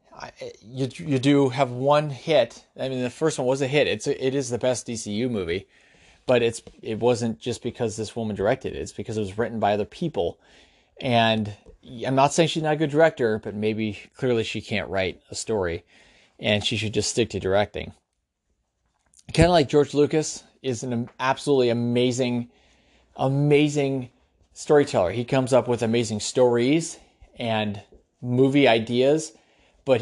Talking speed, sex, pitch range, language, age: 170 wpm, male, 115-145 Hz, English, 30-49